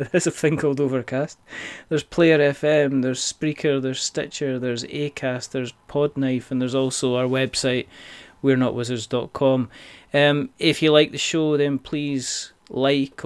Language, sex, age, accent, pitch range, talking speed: English, male, 30-49, British, 120-140 Hz, 135 wpm